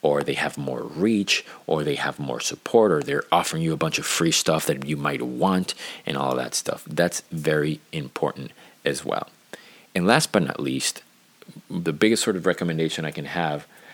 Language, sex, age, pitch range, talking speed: English, male, 30-49, 75-90 Hz, 195 wpm